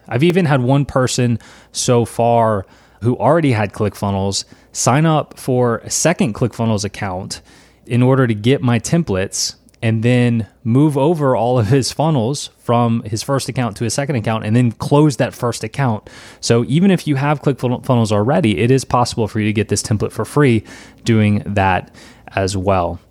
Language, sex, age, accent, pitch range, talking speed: English, male, 20-39, American, 105-130 Hz, 175 wpm